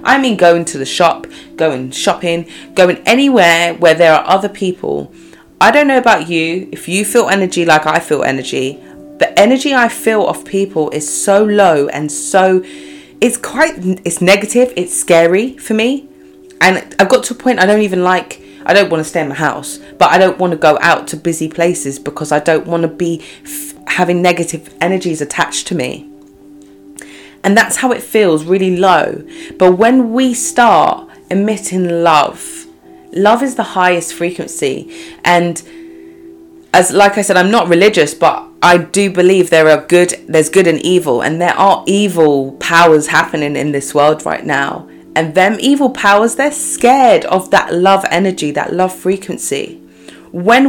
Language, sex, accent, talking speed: English, female, British, 175 wpm